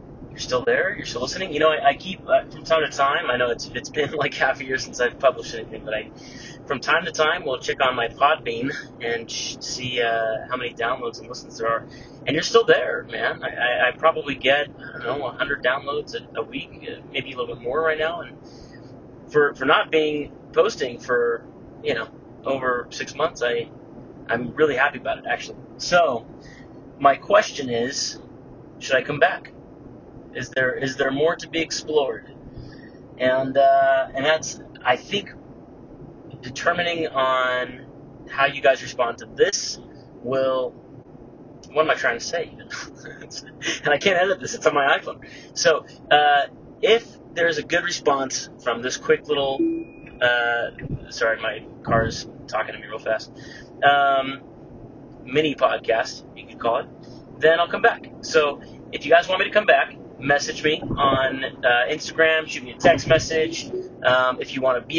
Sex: male